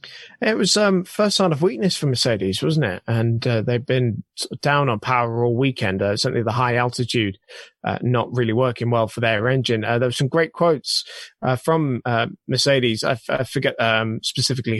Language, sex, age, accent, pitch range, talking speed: English, male, 20-39, British, 115-130 Hz, 200 wpm